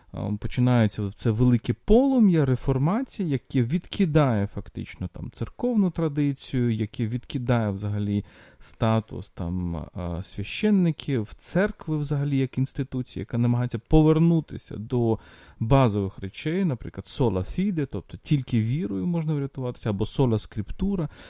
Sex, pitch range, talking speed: male, 110-155 Hz, 105 wpm